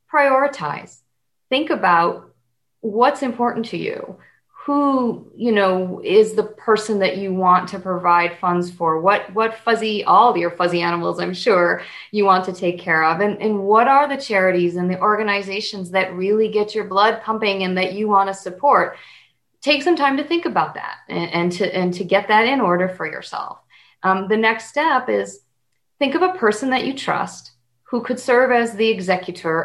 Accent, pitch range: American, 180-240 Hz